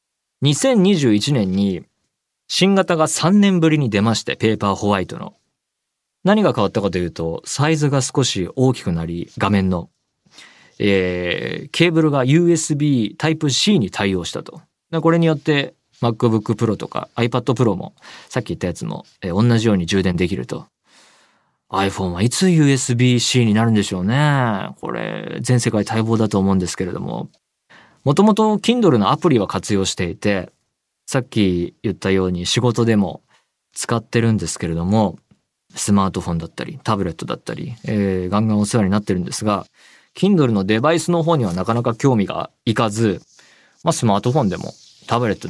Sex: male